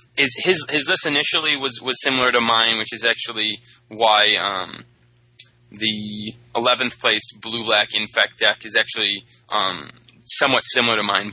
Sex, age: male, 20-39